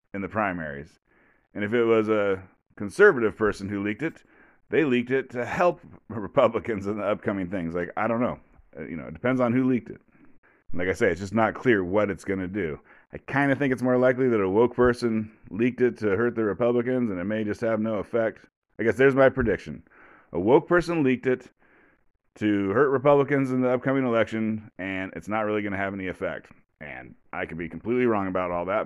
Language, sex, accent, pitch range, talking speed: English, male, American, 90-120 Hz, 220 wpm